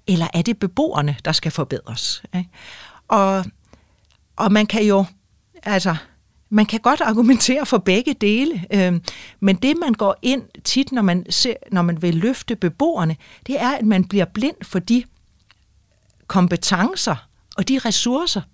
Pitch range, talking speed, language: 185-240 Hz, 140 wpm, Danish